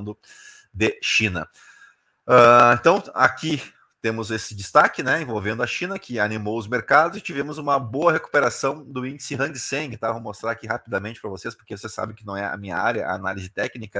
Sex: male